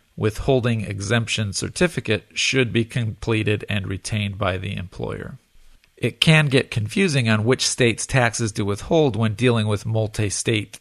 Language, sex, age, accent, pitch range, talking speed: English, male, 40-59, American, 105-125 Hz, 140 wpm